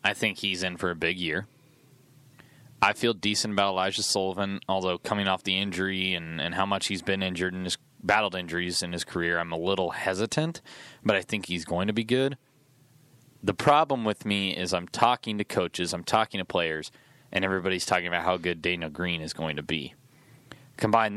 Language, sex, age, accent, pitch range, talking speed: English, male, 20-39, American, 95-135 Hz, 200 wpm